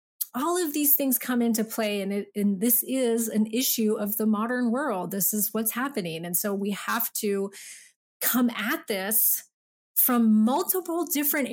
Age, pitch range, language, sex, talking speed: 30-49, 200-240 Hz, English, female, 165 wpm